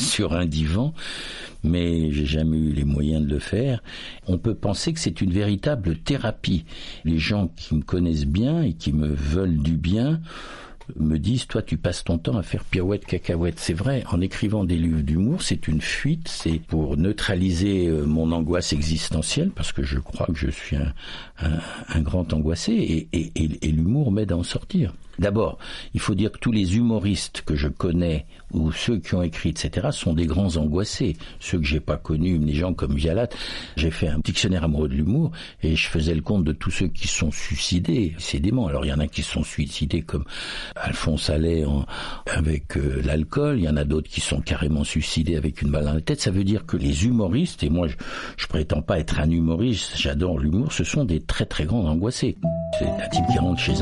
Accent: French